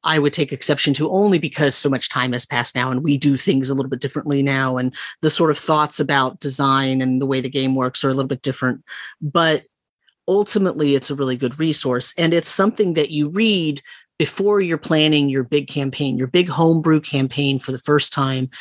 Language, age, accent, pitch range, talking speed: English, 30-49, American, 135-160 Hz, 215 wpm